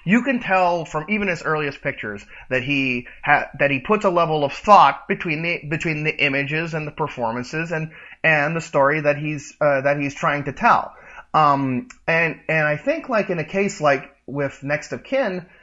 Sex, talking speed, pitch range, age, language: male, 200 wpm, 135-175 Hz, 30-49, English